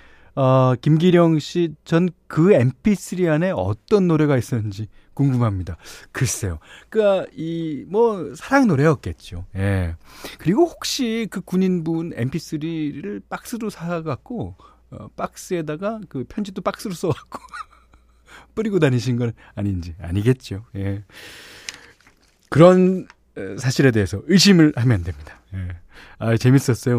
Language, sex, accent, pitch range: Korean, male, native, 105-165 Hz